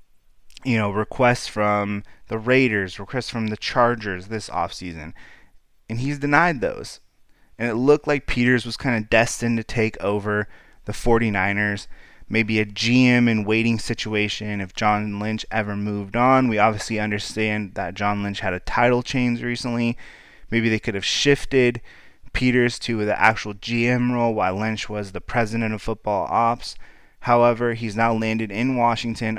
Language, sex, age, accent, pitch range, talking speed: English, male, 20-39, American, 105-120 Hz, 160 wpm